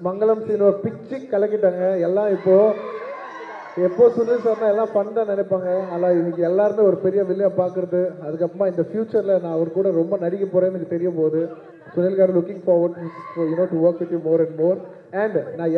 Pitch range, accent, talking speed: 170-210 Hz, native, 175 wpm